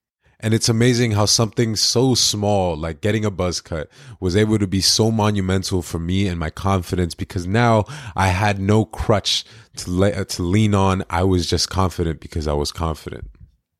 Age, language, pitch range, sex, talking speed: 20-39, English, 90-110 Hz, male, 185 wpm